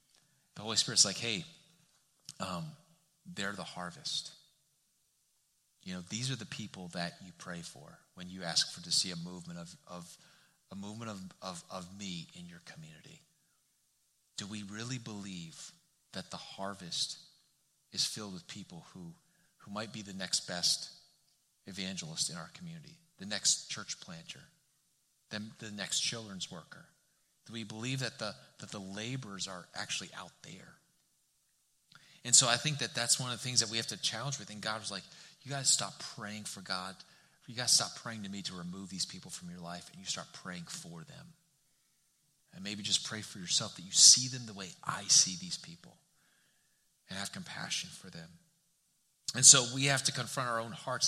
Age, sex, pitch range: 30-49, male, 105-160 Hz